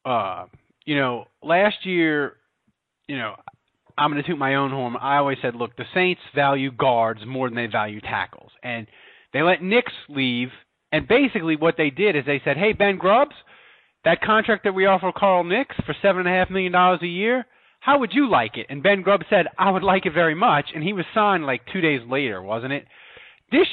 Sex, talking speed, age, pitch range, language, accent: male, 215 wpm, 30-49, 145-215 Hz, English, American